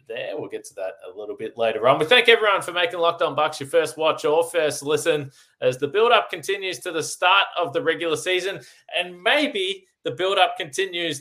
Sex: male